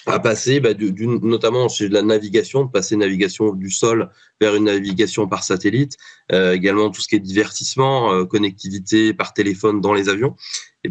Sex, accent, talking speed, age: male, French, 185 wpm, 20-39